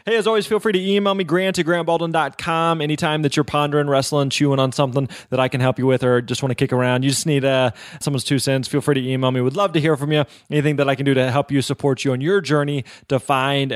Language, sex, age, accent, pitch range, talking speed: English, male, 20-39, American, 125-160 Hz, 275 wpm